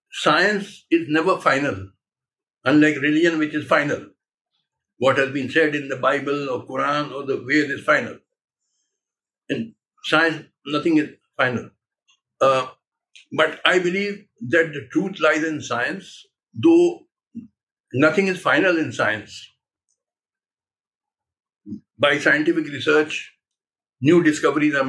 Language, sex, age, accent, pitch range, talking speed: Hindi, male, 60-79, native, 150-200 Hz, 120 wpm